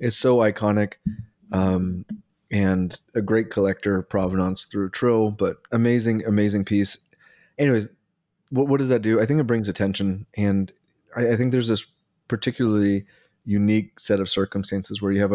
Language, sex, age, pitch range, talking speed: English, male, 30-49, 95-110 Hz, 155 wpm